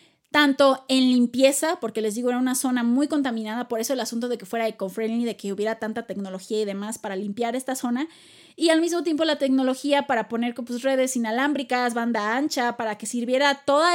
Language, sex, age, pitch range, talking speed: Spanish, female, 20-39, 230-275 Hz, 200 wpm